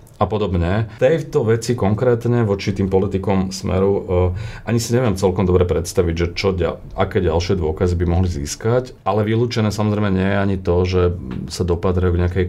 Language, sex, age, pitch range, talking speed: Slovak, male, 40-59, 90-100 Hz, 175 wpm